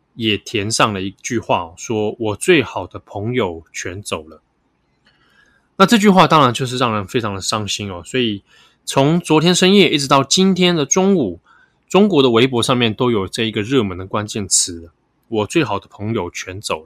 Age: 20-39